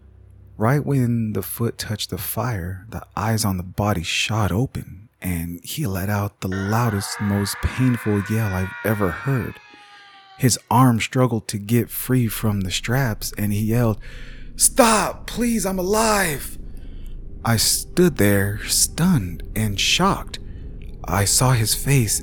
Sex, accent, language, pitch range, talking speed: male, American, English, 95-125 Hz, 140 wpm